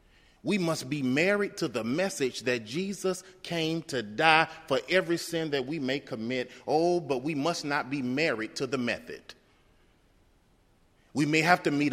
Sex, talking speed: male, 170 wpm